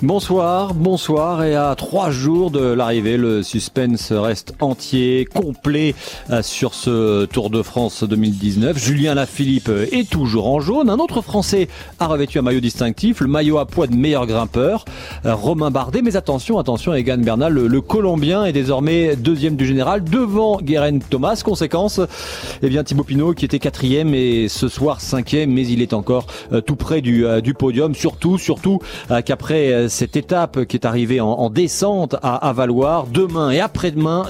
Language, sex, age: French, male, 40-59